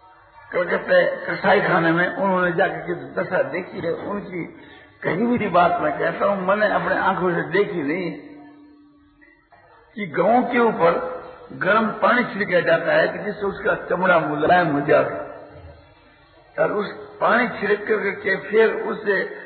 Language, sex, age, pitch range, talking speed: Hindi, male, 50-69, 185-240 Hz, 140 wpm